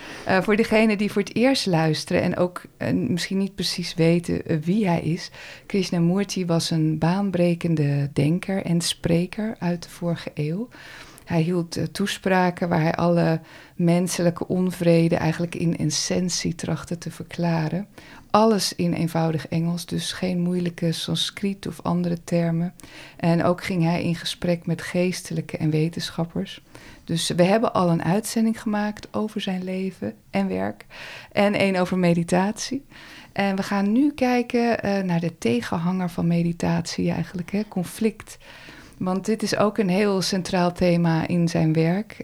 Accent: Dutch